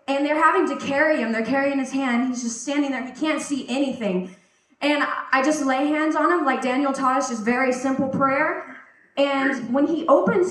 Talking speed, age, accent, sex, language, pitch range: 210 wpm, 20-39, American, female, Czech, 270-340 Hz